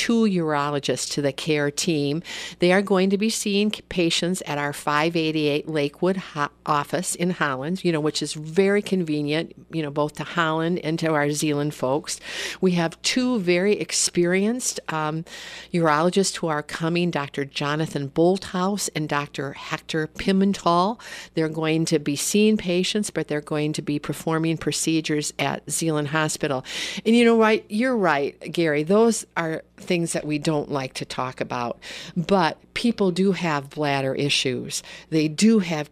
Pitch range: 150-195 Hz